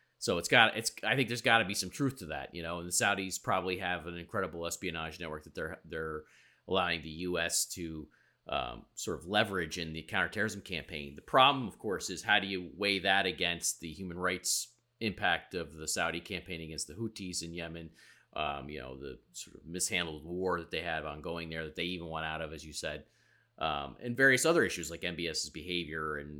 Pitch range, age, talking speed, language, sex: 80-105 Hz, 30-49, 215 wpm, English, male